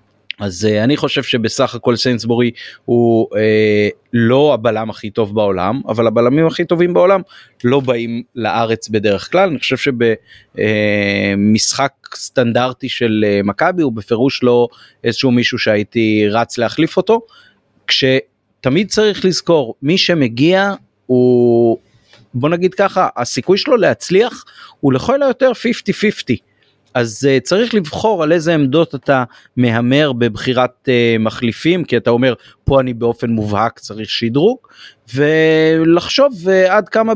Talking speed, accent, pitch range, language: 130 wpm, native, 115-160 Hz, Hebrew